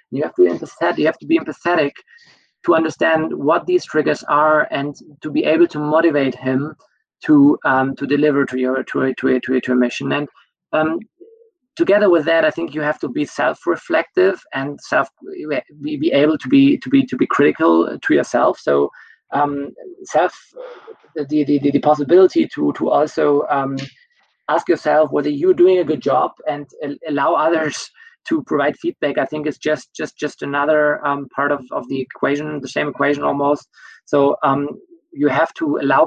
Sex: male